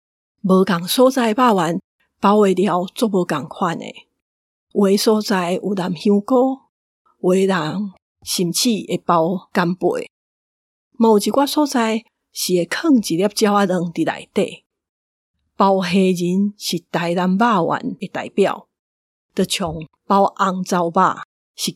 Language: Chinese